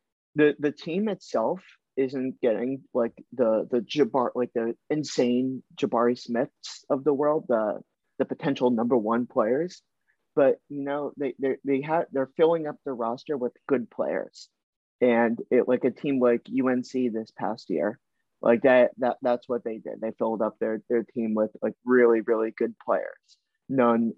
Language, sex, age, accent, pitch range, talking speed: English, male, 30-49, American, 115-145 Hz, 170 wpm